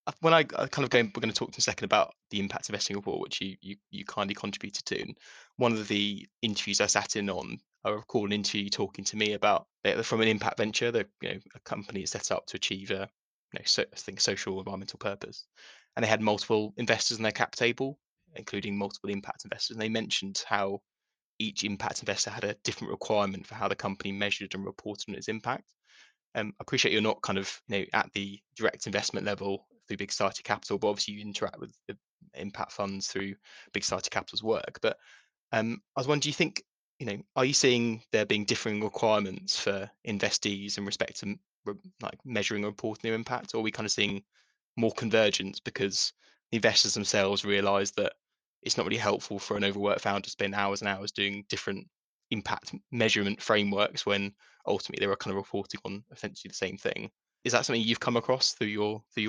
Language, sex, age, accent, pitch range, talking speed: English, male, 20-39, British, 100-115 Hz, 215 wpm